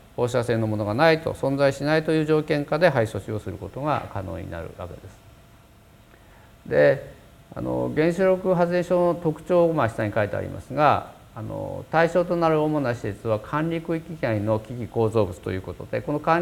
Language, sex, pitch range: Japanese, male, 110-160 Hz